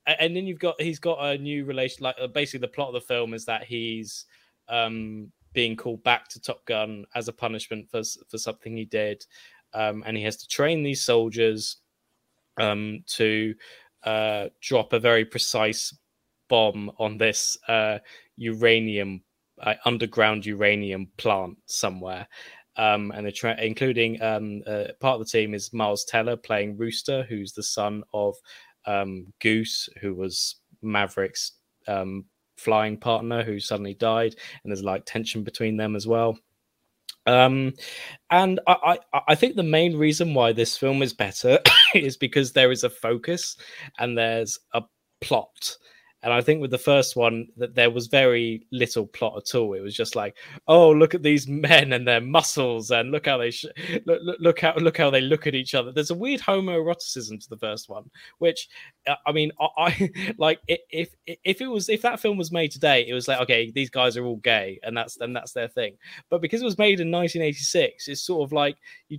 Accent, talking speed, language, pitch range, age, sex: British, 185 wpm, English, 110-155 Hz, 20-39, male